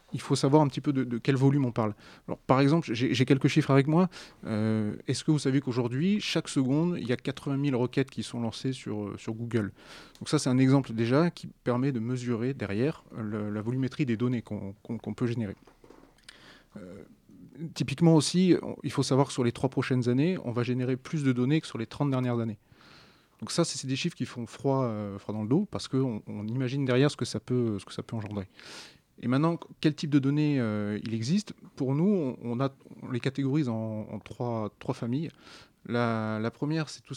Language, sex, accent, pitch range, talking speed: French, male, French, 115-140 Hz, 230 wpm